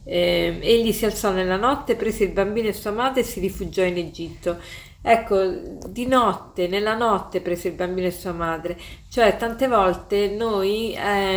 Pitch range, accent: 180-220 Hz, native